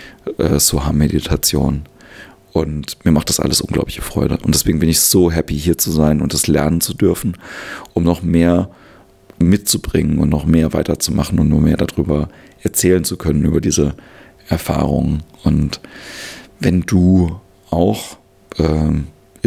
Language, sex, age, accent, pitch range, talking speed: German, male, 40-59, German, 75-85 Hz, 145 wpm